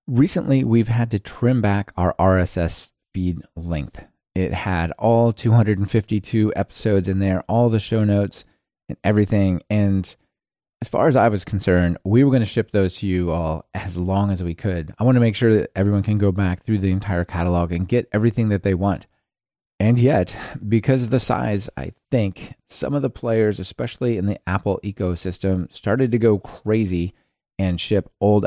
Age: 30-49